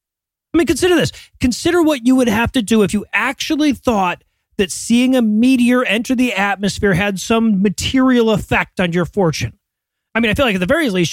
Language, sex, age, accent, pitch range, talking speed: English, male, 30-49, American, 200-260 Hz, 205 wpm